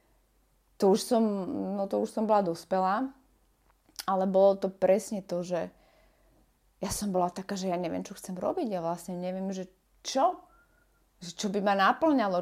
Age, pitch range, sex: 30-49, 185-230 Hz, female